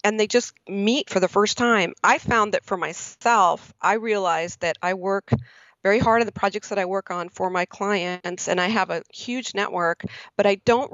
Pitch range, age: 175-200 Hz, 40-59